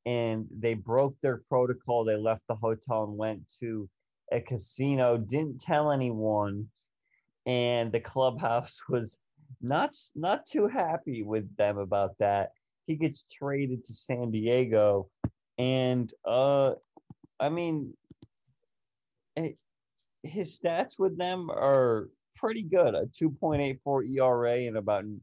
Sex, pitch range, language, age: male, 105-130 Hz, English, 30-49